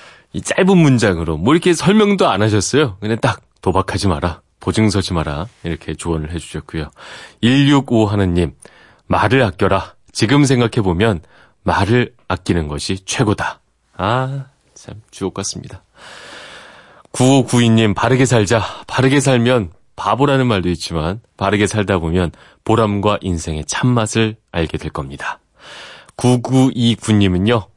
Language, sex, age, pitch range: Korean, male, 30-49, 90-130 Hz